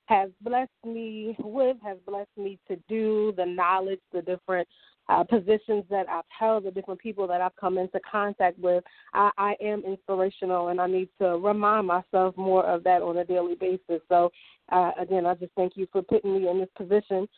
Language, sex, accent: English, female, American